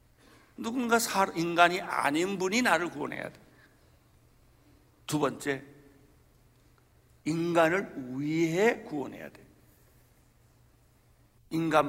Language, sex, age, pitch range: Korean, male, 50-69, 135-175 Hz